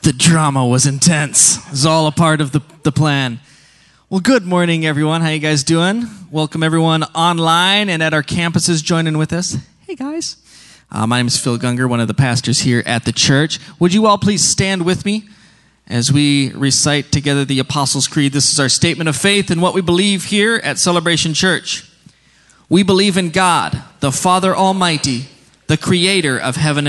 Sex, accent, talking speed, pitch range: male, American, 190 wpm, 135-175 Hz